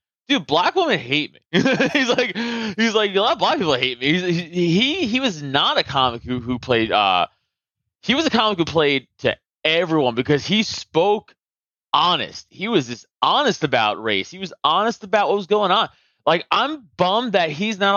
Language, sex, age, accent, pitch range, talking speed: English, male, 30-49, American, 140-205 Hz, 195 wpm